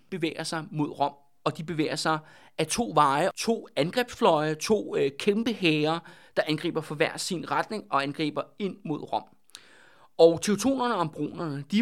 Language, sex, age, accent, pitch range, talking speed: Danish, male, 30-49, native, 150-210 Hz, 170 wpm